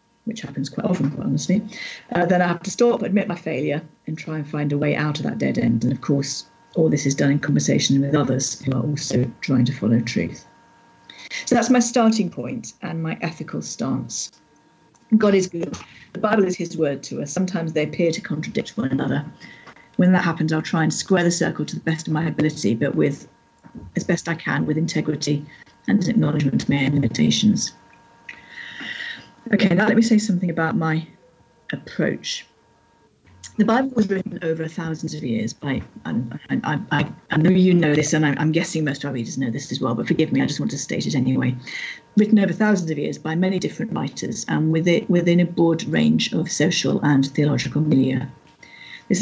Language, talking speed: English, 205 wpm